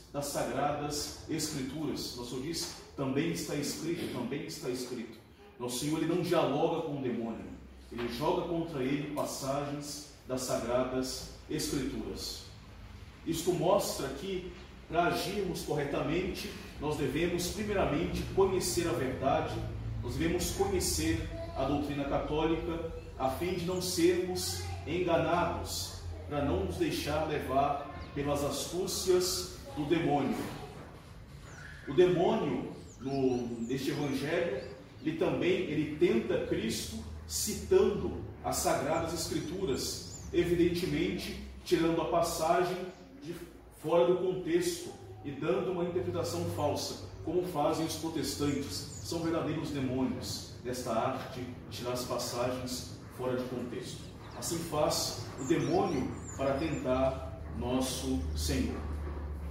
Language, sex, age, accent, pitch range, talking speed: Portuguese, male, 40-59, Brazilian, 115-170 Hz, 115 wpm